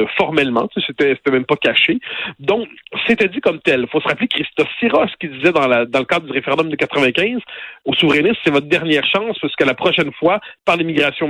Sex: male